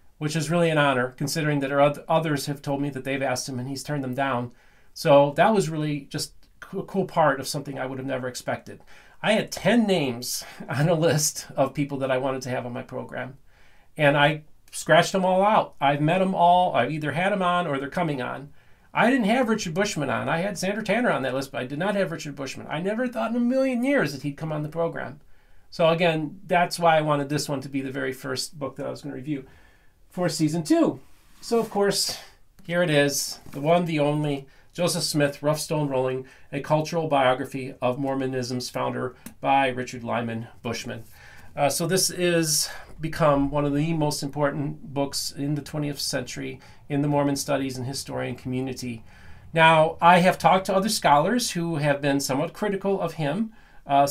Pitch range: 135-170 Hz